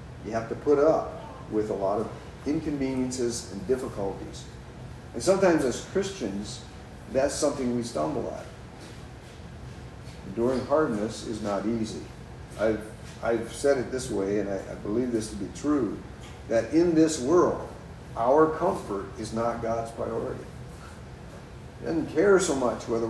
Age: 50-69